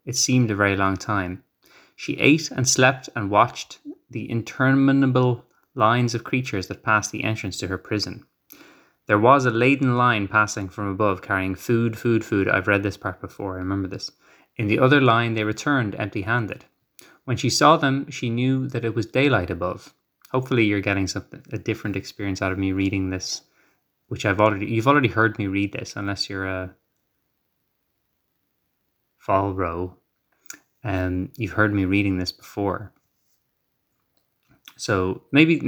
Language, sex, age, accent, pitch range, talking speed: English, male, 20-39, Irish, 95-130 Hz, 165 wpm